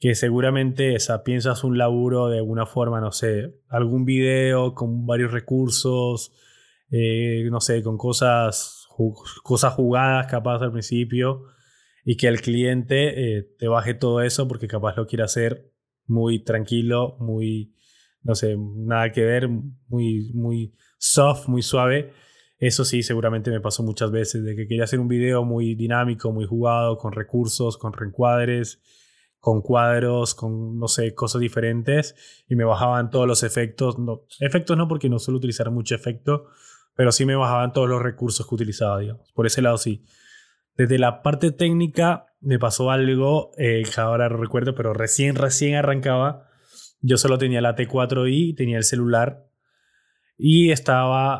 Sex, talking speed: male, 160 wpm